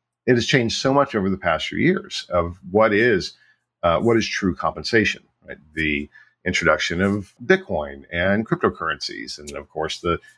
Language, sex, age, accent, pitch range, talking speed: English, male, 50-69, American, 90-135 Hz, 170 wpm